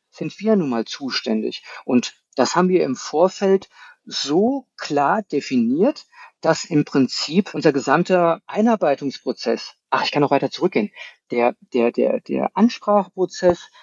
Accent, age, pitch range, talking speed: German, 50-69, 150-210 Hz, 135 wpm